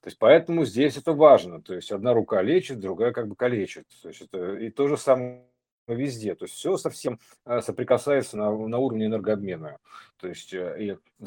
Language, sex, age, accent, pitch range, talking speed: Russian, male, 50-69, native, 105-135 Hz, 150 wpm